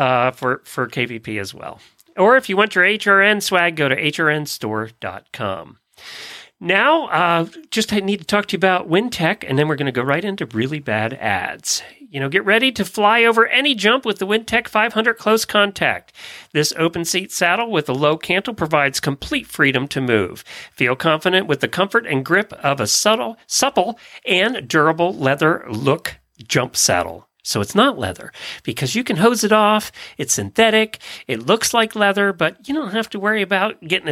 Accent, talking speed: American, 190 wpm